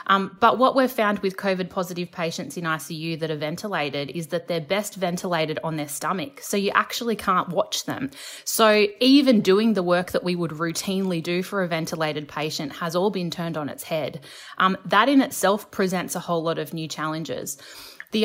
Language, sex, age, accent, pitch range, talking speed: English, female, 20-39, Australian, 165-210 Hz, 200 wpm